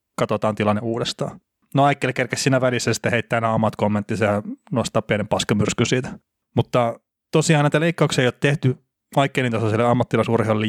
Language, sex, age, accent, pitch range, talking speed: Finnish, male, 30-49, native, 110-140 Hz, 145 wpm